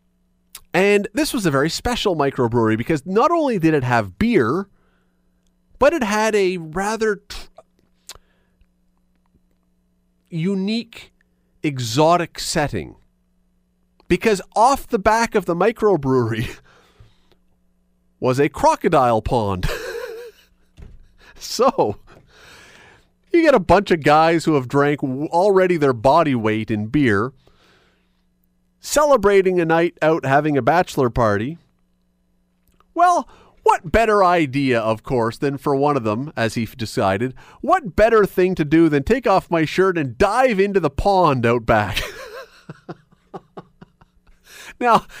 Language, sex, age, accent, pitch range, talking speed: English, male, 40-59, American, 120-190 Hz, 120 wpm